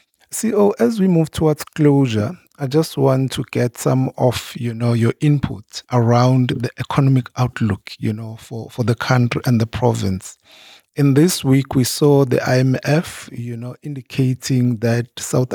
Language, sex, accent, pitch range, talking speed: English, male, Nigerian, 115-140 Hz, 160 wpm